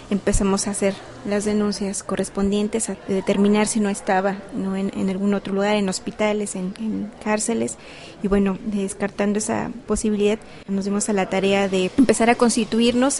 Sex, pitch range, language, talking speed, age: female, 195-215 Hz, Spanish, 160 wpm, 20-39